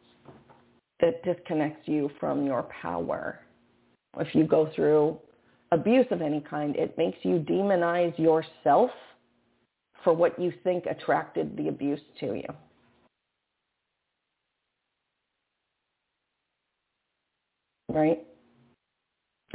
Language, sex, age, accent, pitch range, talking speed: English, female, 40-59, American, 150-185 Hz, 90 wpm